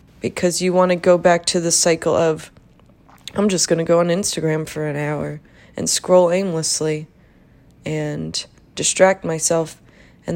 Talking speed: 155 wpm